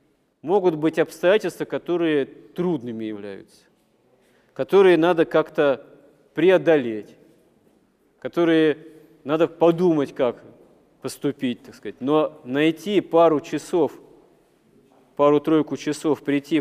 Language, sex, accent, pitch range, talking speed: Russian, male, native, 130-155 Hz, 85 wpm